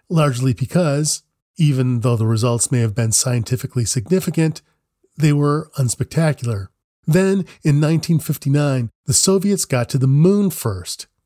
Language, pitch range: English, 120-165 Hz